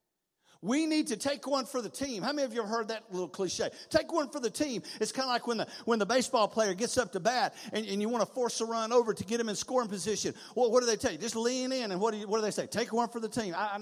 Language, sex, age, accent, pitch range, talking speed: English, male, 50-69, American, 170-235 Hz, 315 wpm